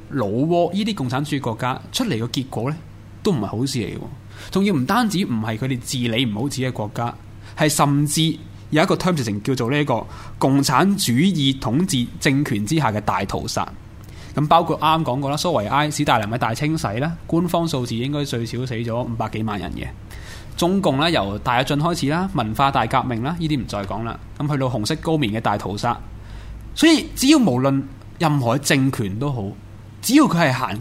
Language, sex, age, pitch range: Chinese, male, 20-39, 105-150 Hz